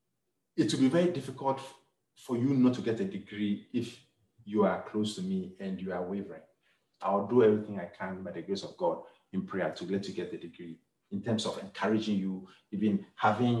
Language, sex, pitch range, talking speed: English, male, 100-130 Hz, 205 wpm